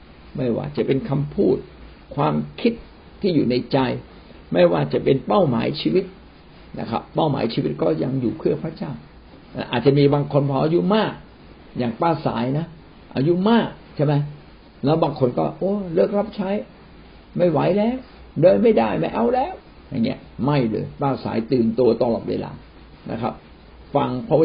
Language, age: Thai, 60-79